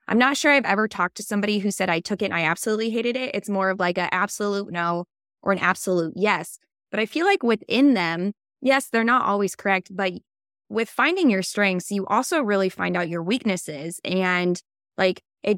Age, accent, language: 20-39, American, English